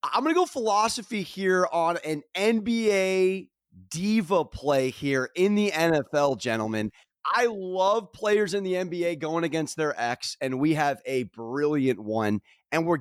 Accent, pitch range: American, 150-210 Hz